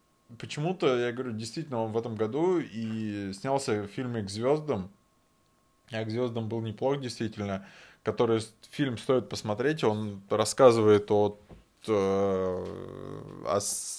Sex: male